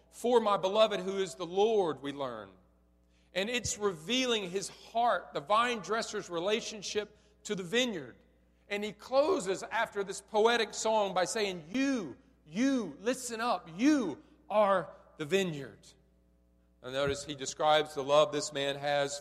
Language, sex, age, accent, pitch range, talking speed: English, male, 40-59, American, 140-205 Hz, 145 wpm